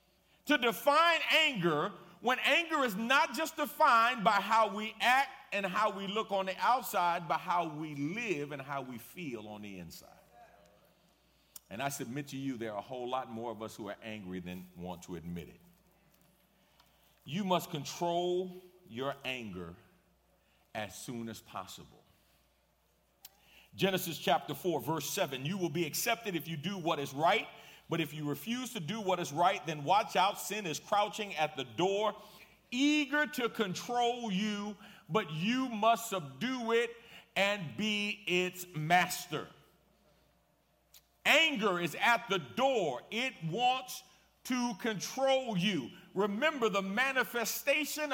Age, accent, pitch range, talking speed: 40-59, American, 155-235 Hz, 150 wpm